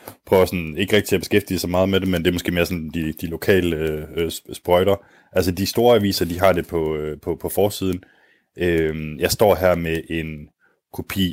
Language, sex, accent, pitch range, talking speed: Danish, male, native, 80-95 Hz, 210 wpm